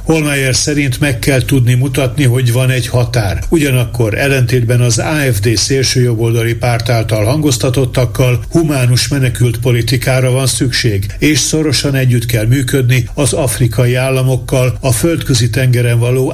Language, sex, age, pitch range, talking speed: Hungarian, male, 60-79, 120-135 Hz, 125 wpm